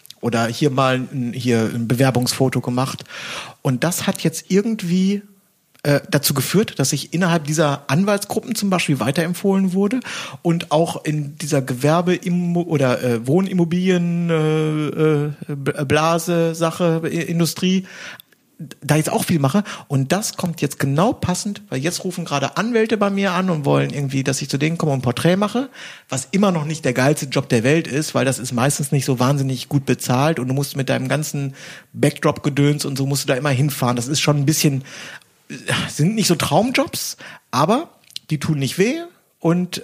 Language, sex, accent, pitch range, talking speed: German, male, German, 135-175 Hz, 175 wpm